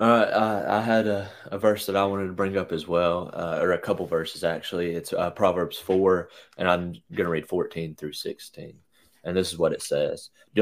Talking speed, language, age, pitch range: 220 wpm, English, 20-39, 80-105 Hz